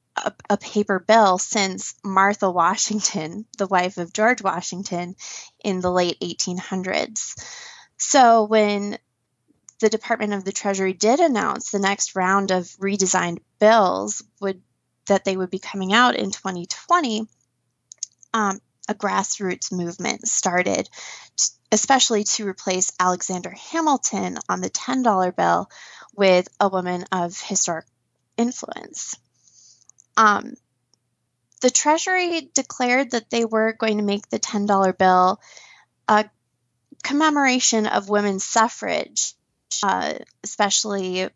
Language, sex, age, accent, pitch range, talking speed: English, female, 20-39, American, 185-220 Hz, 115 wpm